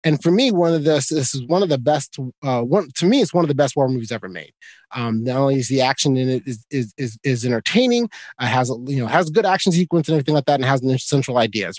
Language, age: English, 30-49